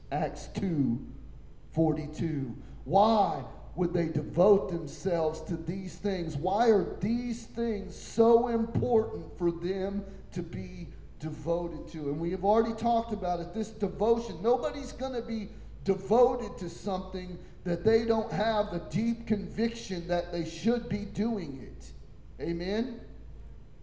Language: English